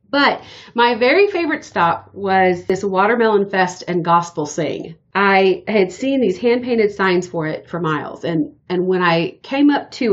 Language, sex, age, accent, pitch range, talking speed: English, female, 40-59, American, 175-220 Hz, 170 wpm